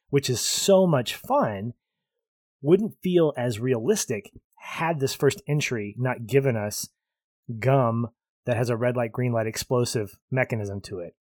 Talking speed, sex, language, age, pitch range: 150 wpm, male, English, 20-39, 115-150 Hz